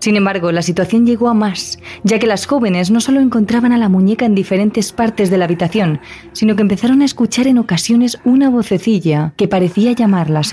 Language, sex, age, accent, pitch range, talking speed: Spanish, female, 20-39, Spanish, 175-230 Hz, 200 wpm